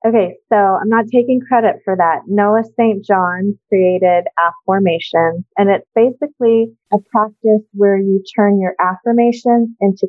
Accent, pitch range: American, 180-225 Hz